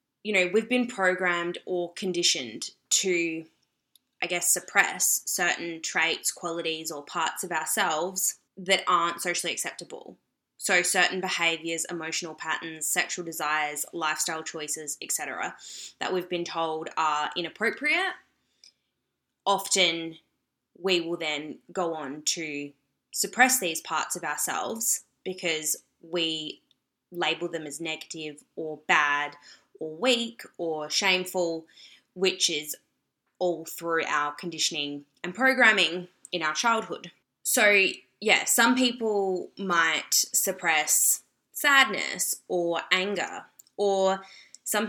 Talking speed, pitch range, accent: 110 wpm, 160-195 Hz, Australian